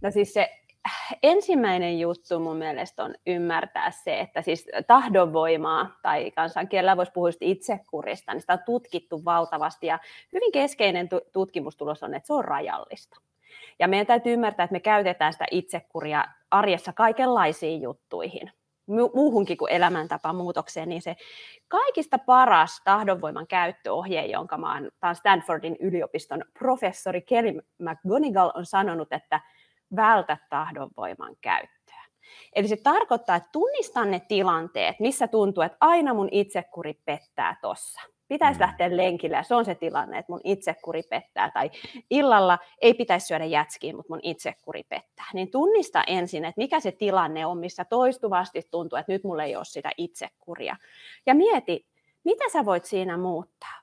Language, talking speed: Finnish, 145 wpm